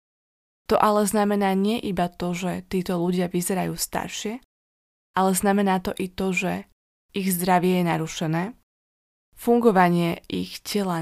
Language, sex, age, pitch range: Slovak, female, 20-39, 170-200 Hz